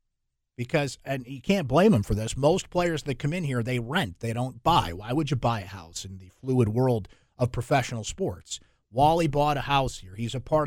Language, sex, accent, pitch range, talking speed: English, male, American, 115-150 Hz, 225 wpm